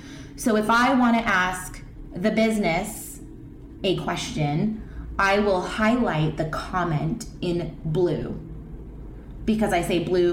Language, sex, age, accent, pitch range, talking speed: English, female, 20-39, American, 160-220 Hz, 120 wpm